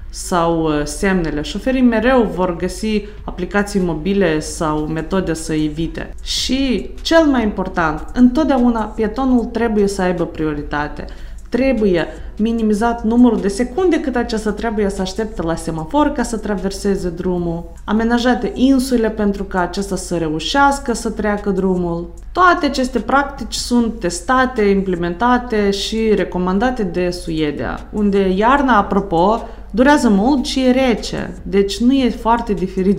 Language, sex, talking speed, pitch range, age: Romanian, female, 130 wpm, 170-235 Hz, 20-39